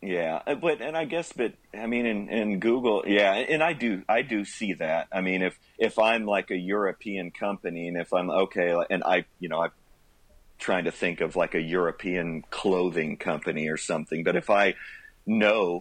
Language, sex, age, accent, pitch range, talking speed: English, male, 40-59, American, 85-100 Hz, 195 wpm